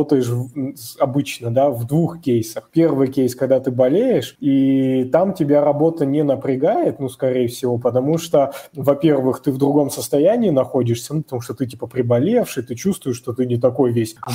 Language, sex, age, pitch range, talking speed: Russian, male, 20-39, 125-145 Hz, 170 wpm